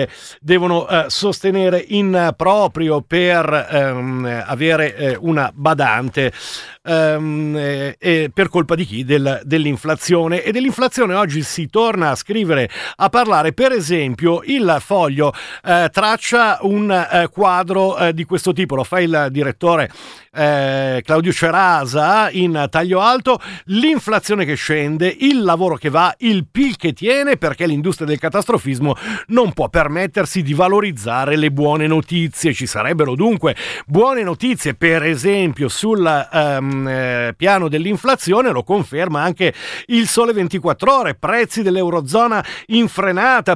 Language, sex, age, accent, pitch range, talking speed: Italian, male, 50-69, native, 155-200 Hz, 130 wpm